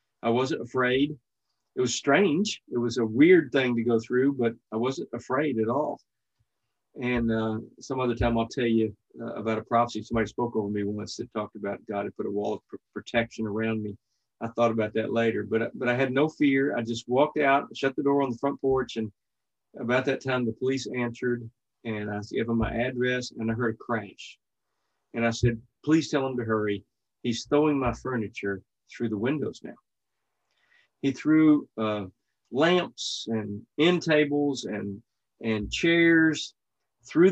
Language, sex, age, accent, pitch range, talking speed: English, male, 40-59, American, 115-140 Hz, 185 wpm